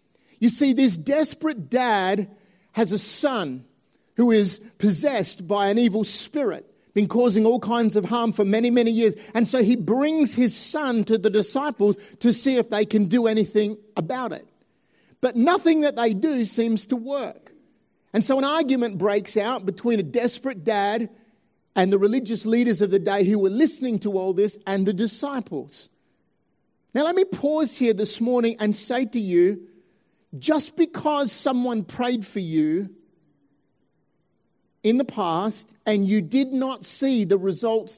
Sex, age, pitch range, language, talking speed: male, 50-69, 205-250 Hz, English, 165 wpm